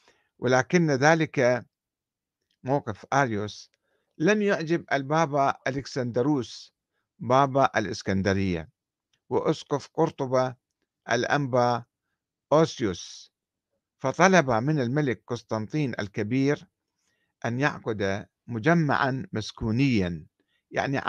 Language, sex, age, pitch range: Arabic, male, 50-69, 120-160 Hz